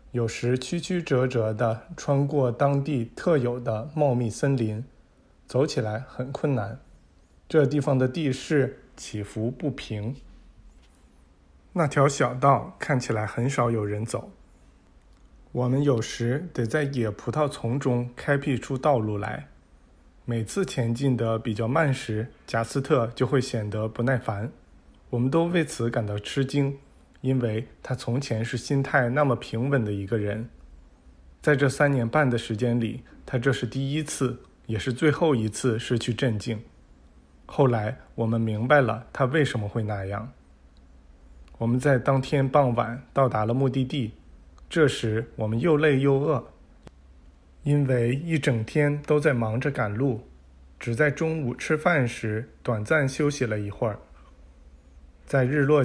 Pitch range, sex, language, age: 110-140 Hz, male, Chinese, 20-39